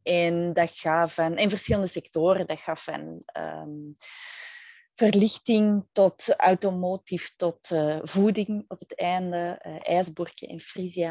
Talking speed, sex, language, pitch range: 130 wpm, female, Dutch, 170-200 Hz